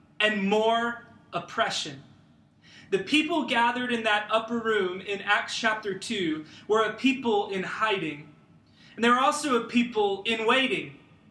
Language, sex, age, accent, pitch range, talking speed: English, male, 30-49, American, 215-275 Hz, 145 wpm